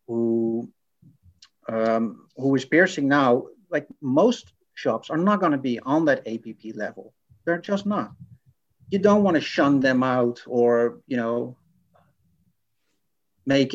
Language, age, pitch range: English, 50-69, 120-150 Hz